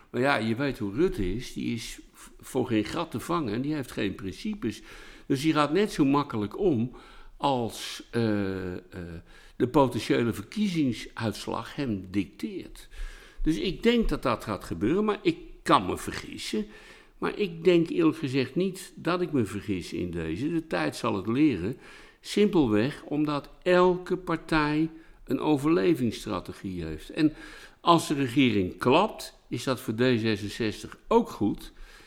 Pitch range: 100-165 Hz